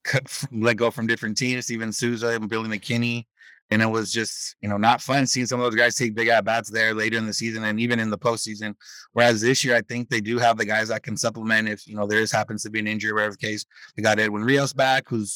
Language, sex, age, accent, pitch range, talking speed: English, male, 30-49, American, 110-120 Hz, 275 wpm